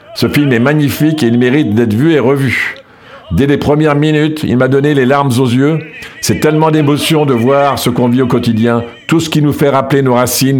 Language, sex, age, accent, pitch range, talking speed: French, male, 50-69, French, 125-155 Hz, 225 wpm